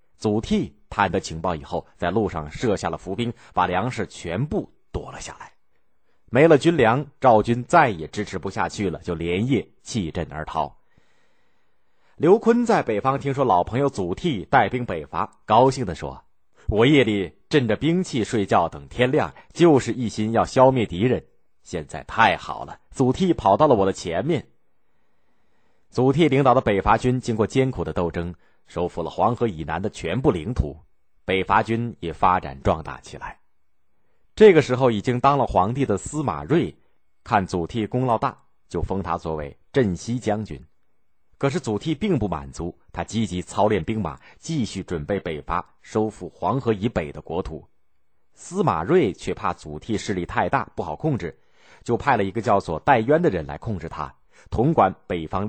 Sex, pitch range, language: male, 85-125 Hz, Chinese